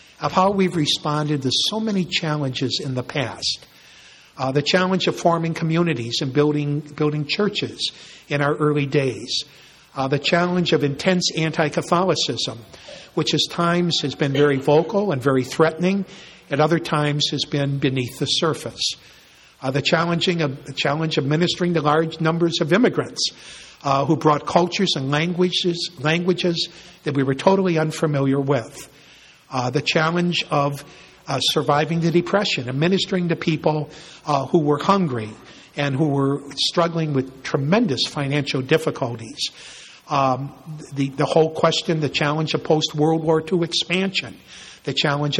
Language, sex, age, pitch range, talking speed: English, male, 60-79, 140-170 Hz, 145 wpm